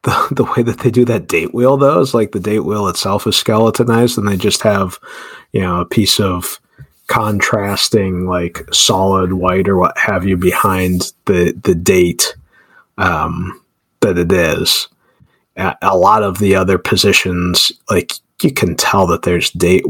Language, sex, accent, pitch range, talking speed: English, male, American, 90-105 Hz, 170 wpm